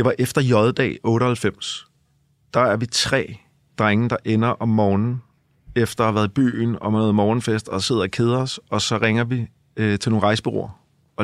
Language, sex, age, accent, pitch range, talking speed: Danish, male, 30-49, native, 105-125 Hz, 200 wpm